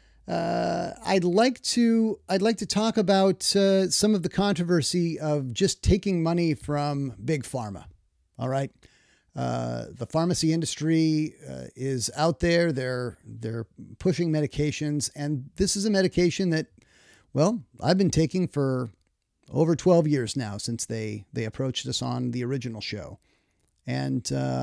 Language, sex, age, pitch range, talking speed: English, male, 40-59, 115-175 Hz, 145 wpm